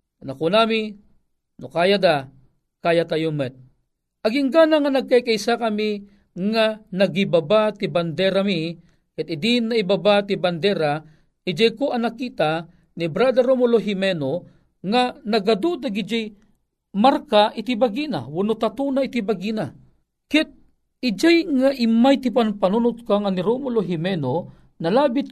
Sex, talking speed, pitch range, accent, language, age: male, 105 wpm, 165-230 Hz, native, Filipino, 40-59